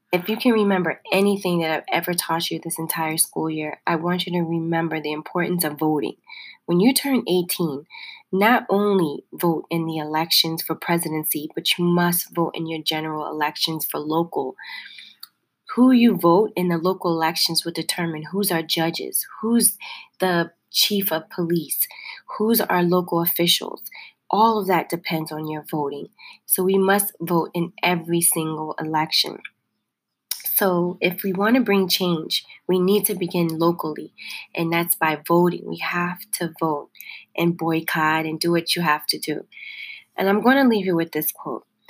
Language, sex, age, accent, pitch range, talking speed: English, female, 20-39, American, 165-195 Hz, 170 wpm